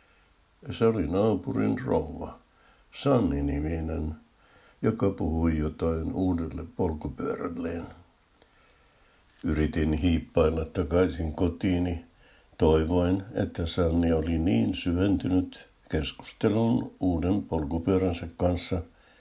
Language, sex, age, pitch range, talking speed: Finnish, male, 60-79, 80-105 Hz, 80 wpm